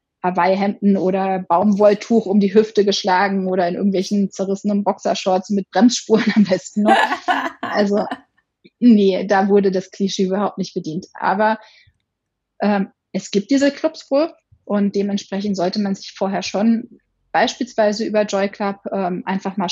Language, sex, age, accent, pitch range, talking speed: German, female, 20-39, German, 190-225 Hz, 145 wpm